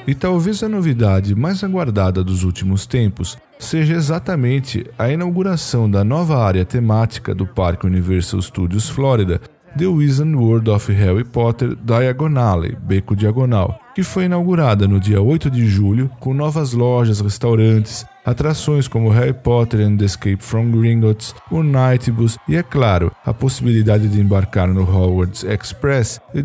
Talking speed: 145 wpm